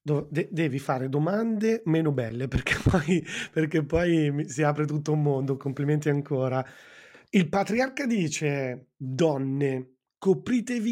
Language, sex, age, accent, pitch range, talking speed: Italian, male, 30-49, native, 140-175 Hz, 110 wpm